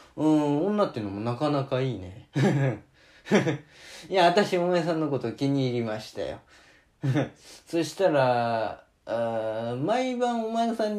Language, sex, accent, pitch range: Japanese, male, native, 135-210 Hz